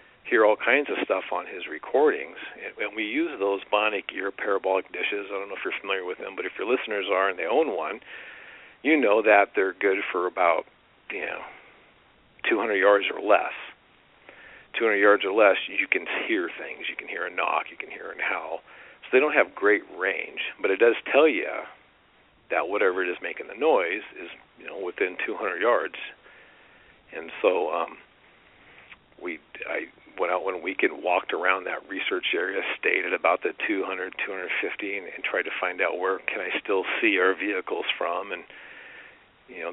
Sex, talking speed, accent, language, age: male, 185 wpm, American, English, 50-69